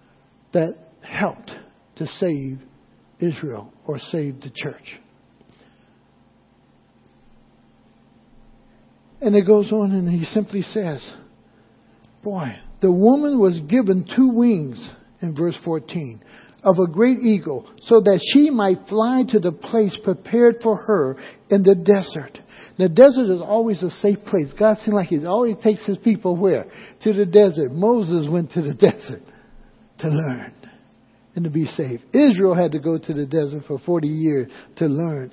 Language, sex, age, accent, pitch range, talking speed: English, male, 60-79, American, 170-225 Hz, 150 wpm